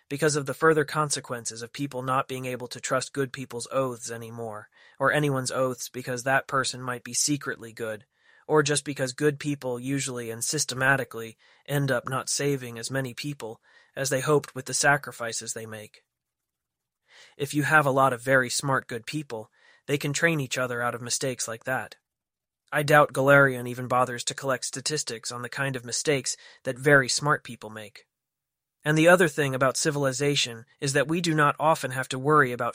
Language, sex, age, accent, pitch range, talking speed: English, male, 20-39, American, 120-145 Hz, 190 wpm